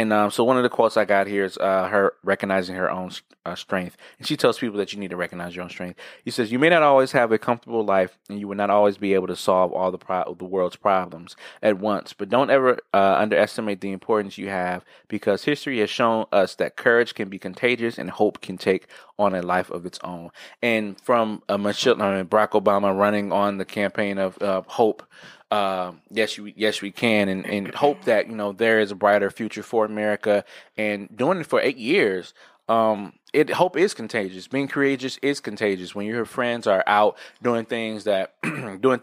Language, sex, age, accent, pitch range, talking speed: English, male, 20-39, American, 95-115 Hz, 215 wpm